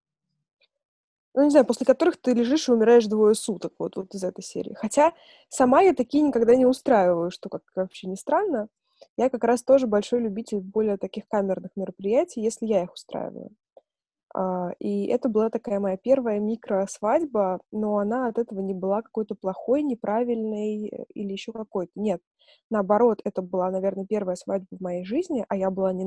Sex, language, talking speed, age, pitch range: female, Russian, 175 wpm, 20-39, 205-265 Hz